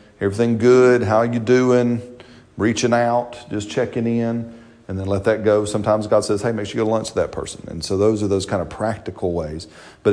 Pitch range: 95-110 Hz